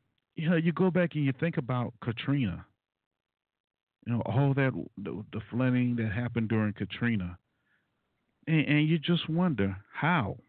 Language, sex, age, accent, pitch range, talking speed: English, male, 50-69, American, 105-140 Hz, 155 wpm